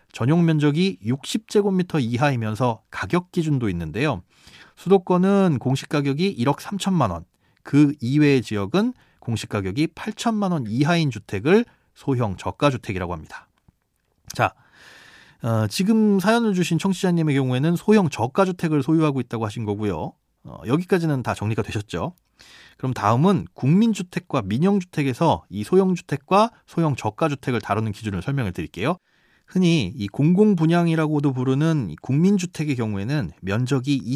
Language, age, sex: Korean, 30-49, male